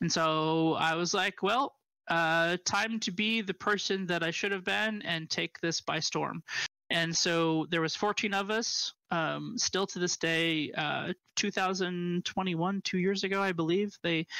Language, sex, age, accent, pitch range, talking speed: English, male, 20-39, American, 160-190 Hz, 175 wpm